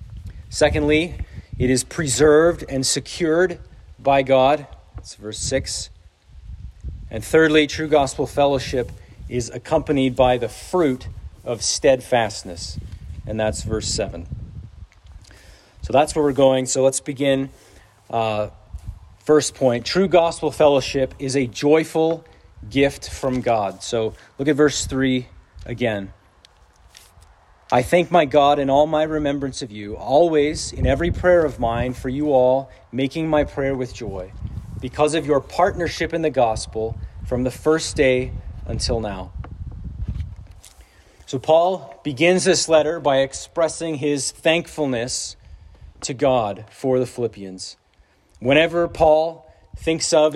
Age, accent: 40-59, American